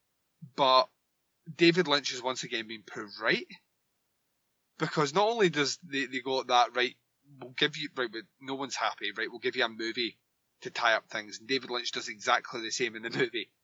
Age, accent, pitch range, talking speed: 20-39, British, 120-165 Hz, 200 wpm